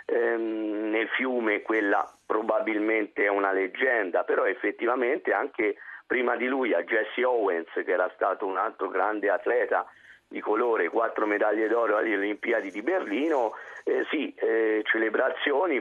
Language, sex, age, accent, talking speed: Italian, male, 50-69, native, 135 wpm